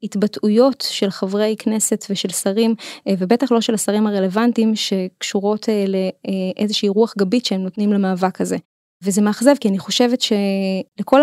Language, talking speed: Hebrew, 150 wpm